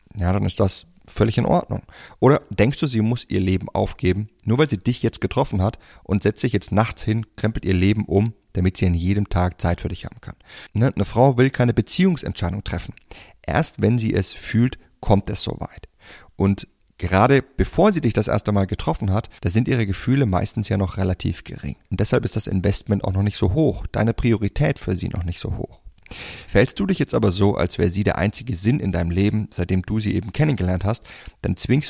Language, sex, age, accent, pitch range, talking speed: German, male, 30-49, German, 95-120 Hz, 220 wpm